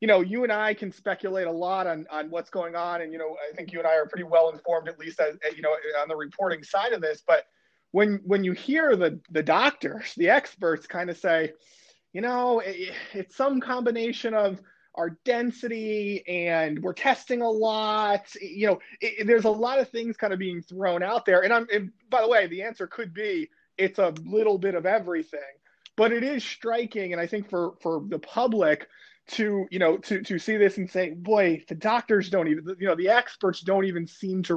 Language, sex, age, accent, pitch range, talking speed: English, male, 30-49, American, 170-215 Hz, 220 wpm